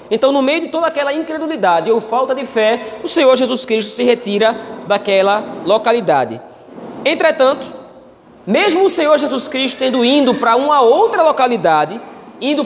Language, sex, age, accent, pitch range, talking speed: Portuguese, male, 20-39, Brazilian, 225-295 Hz, 150 wpm